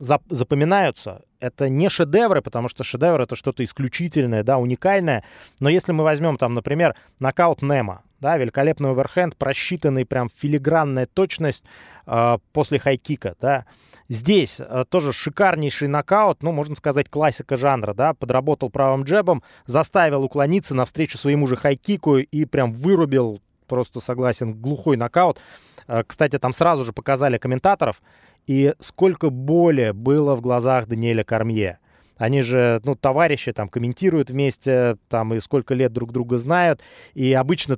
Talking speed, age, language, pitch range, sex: 145 wpm, 20-39, Russian, 120-155 Hz, male